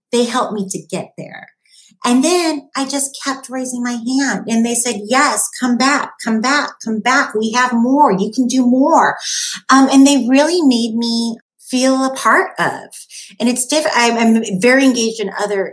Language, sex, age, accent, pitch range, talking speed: English, female, 30-49, American, 190-245 Hz, 185 wpm